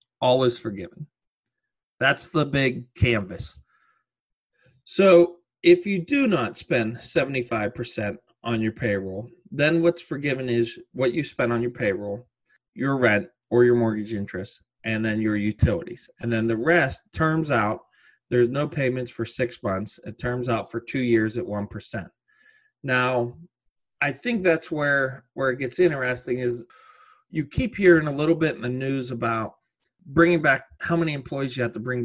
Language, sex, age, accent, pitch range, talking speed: English, male, 30-49, American, 115-170 Hz, 160 wpm